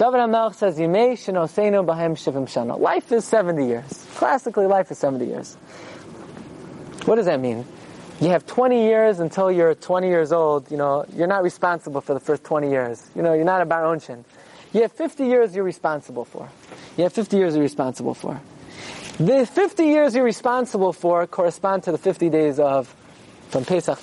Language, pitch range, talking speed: English, 155-215 Hz, 170 wpm